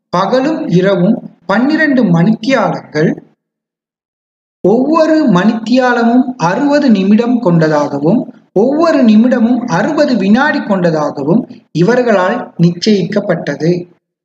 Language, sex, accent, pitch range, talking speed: Tamil, male, native, 175-245 Hz, 65 wpm